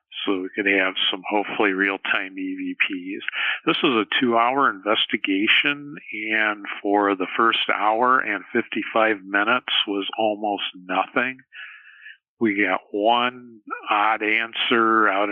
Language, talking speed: English, 120 wpm